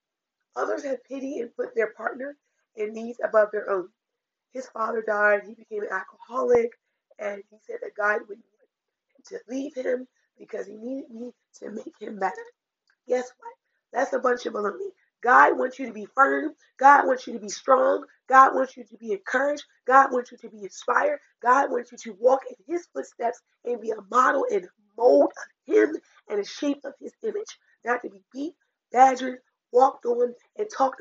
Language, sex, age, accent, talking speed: English, female, 30-49, American, 195 wpm